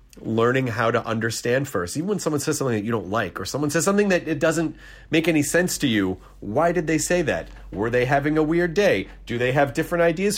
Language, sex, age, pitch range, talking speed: English, male, 30-49, 115-155 Hz, 245 wpm